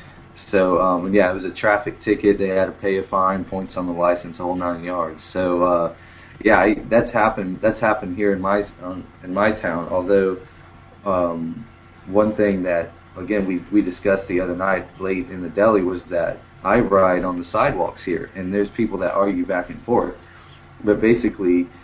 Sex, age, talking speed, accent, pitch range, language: male, 20-39, 190 wpm, American, 90-100 Hz, English